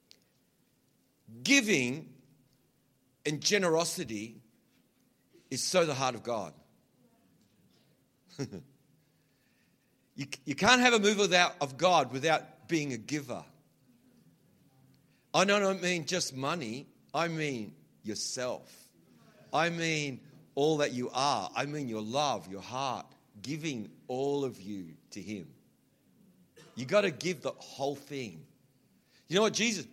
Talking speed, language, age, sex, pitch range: 120 wpm, English, 50-69, male, 130-170 Hz